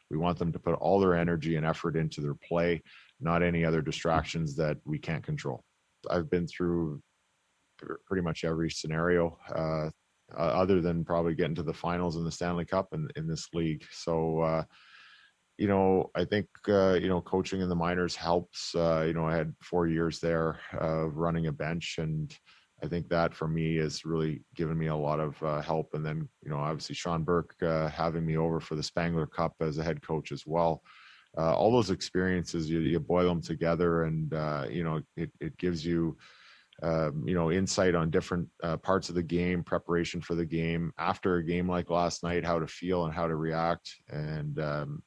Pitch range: 80-90 Hz